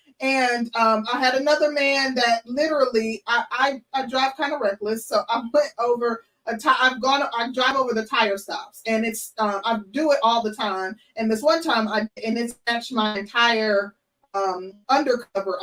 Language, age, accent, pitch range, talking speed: English, 20-39, American, 215-260 Hz, 200 wpm